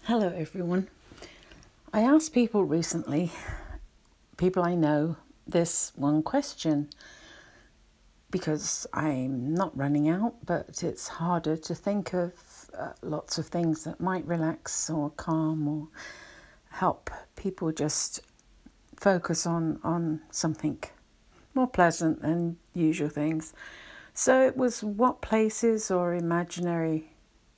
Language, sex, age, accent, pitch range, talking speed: English, female, 50-69, British, 155-190 Hz, 115 wpm